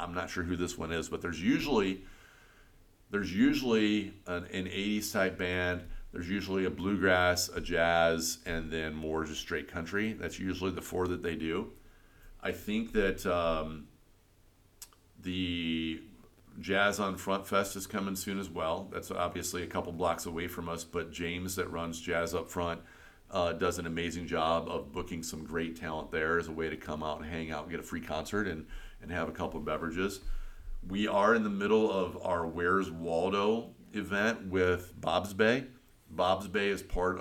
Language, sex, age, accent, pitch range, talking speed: English, male, 40-59, American, 85-100 Hz, 185 wpm